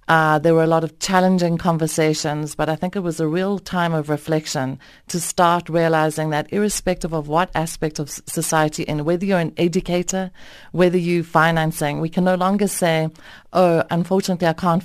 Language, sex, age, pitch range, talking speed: English, female, 40-59, 155-180 Hz, 180 wpm